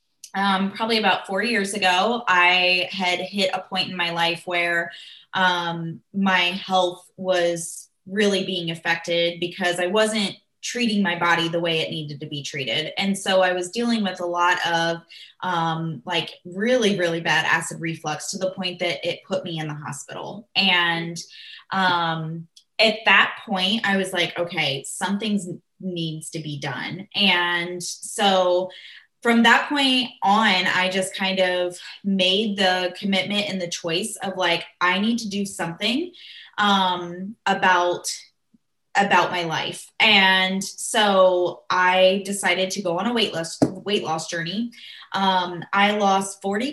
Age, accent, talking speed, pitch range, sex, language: 20-39, American, 155 wpm, 175-200 Hz, female, English